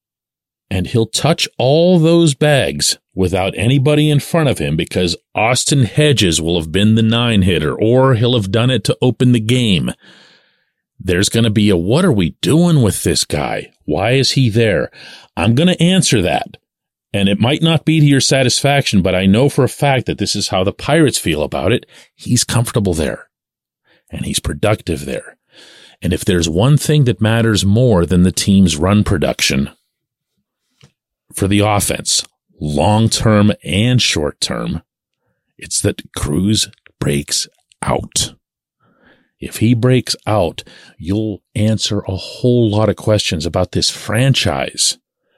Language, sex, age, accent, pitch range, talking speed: English, male, 40-59, American, 95-130 Hz, 155 wpm